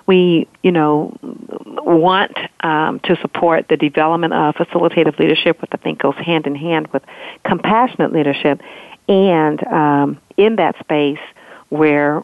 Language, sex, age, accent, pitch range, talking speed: English, female, 50-69, American, 145-170 Hz, 130 wpm